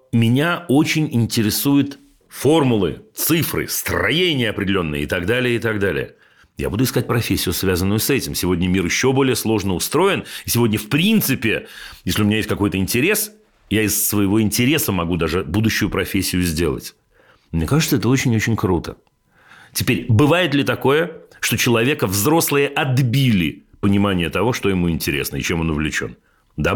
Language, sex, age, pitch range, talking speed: Russian, male, 40-59, 100-140 Hz, 150 wpm